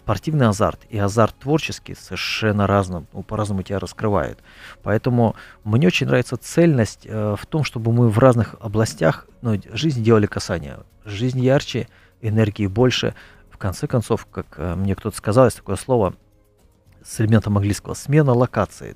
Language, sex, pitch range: Russian, male, 95-115 Hz